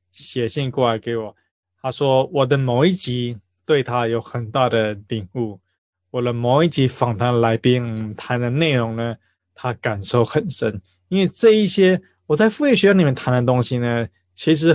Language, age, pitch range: Chinese, 20-39, 115-145 Hz